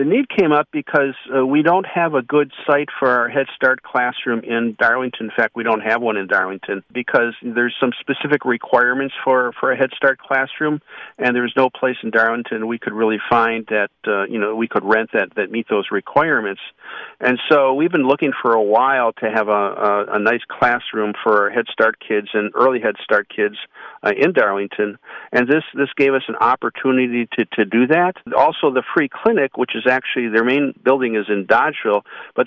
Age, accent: 50-69, American